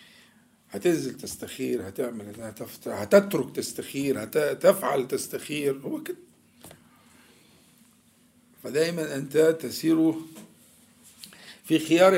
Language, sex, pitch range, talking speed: Arabic, male, 125-185 Hz, 75 wpm